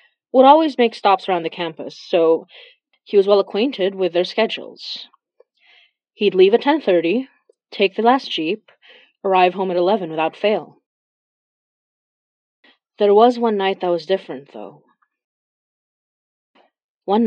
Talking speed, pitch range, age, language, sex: 130 wpm, 155-215 Hz, 30-49, English, female